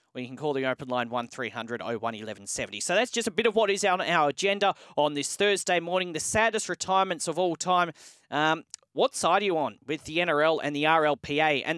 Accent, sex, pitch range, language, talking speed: Australian, male, 135-185 Hz, English, 215 wpm